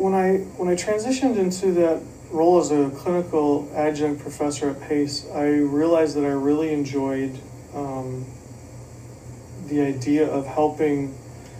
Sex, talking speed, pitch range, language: male, 135 wpm, 130-150 Hz, English